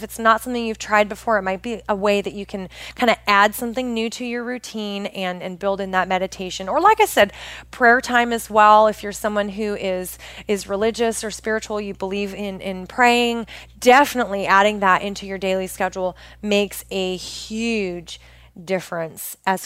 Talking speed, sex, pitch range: 190 wpm, female, 195-240 Hz